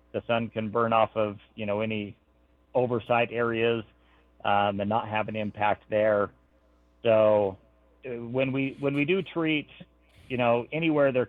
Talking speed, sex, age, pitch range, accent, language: 155 wpm, male, 40-59, 100-120 Hz, American, English